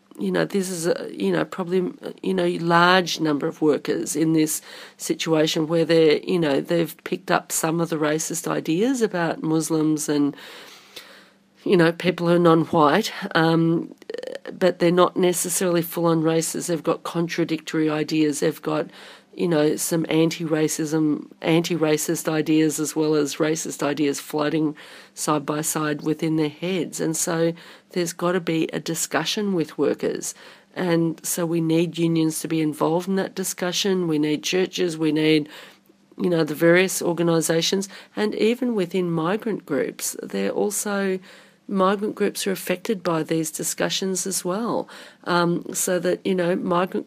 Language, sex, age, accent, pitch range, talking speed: English, female, 40-59, Australian, 155-180 Hz, 155 wpm